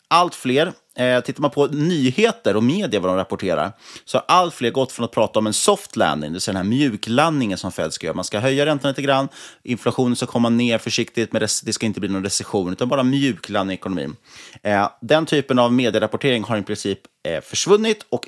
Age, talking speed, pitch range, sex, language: 30-49, 215 wpm, 100-130 Hz, male, Swedish